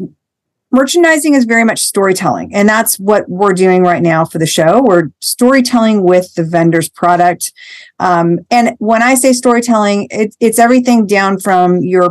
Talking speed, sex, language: 160 wpm, female, English